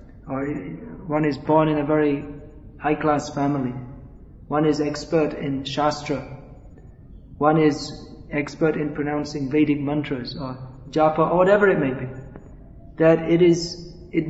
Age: 30-49